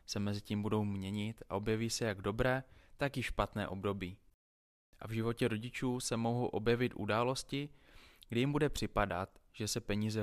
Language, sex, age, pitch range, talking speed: Czech, male, 20-39, 100-115 Hz, 170 wpm